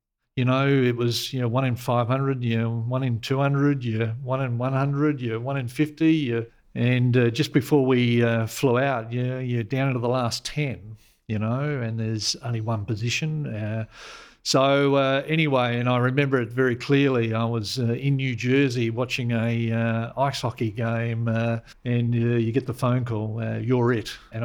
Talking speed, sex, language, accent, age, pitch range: 200 wpm, male, English, Australian, 50-69, 110-130 Hz